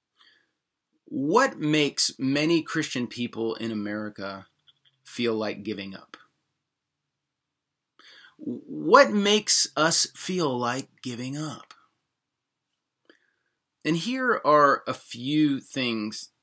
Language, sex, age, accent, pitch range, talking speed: English, male, 30-49, American, 120-165 Hz, 90 wpm